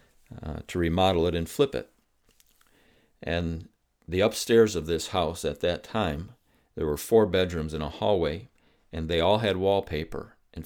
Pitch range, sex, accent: 80-95 Hz, male, American